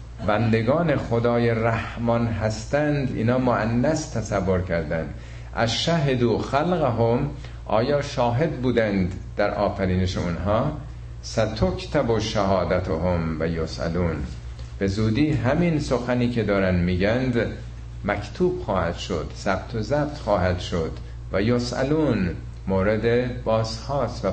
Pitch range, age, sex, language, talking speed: 70-120 Hz, 50-69, male, Persian, 110 wpm